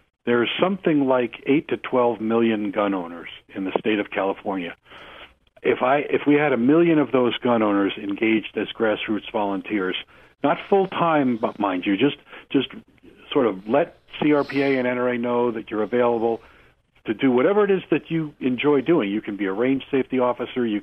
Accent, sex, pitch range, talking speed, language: American, male, 105-130 Hz, 185 wpm, English